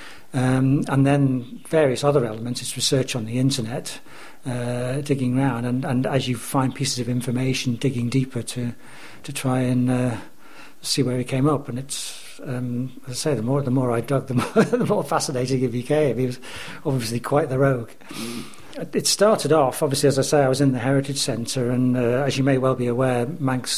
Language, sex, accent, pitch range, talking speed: English, male, British, 125-140 Hz, 205 wpm